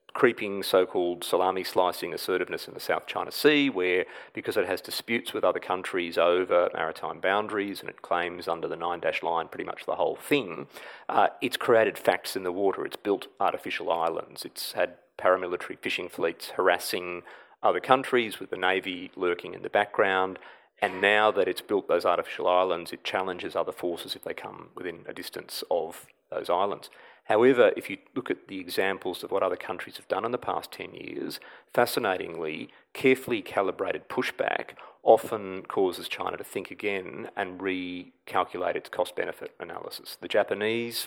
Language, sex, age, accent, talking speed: English, male, 40-59, Australian, 165 wpm